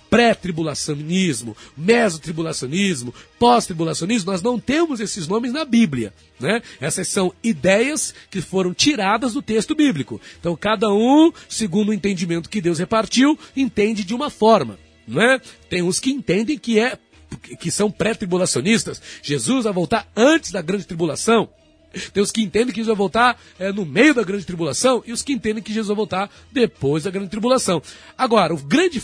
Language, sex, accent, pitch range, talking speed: Portuguese, male, Brazilian, 175-240 Hz, 165 wpm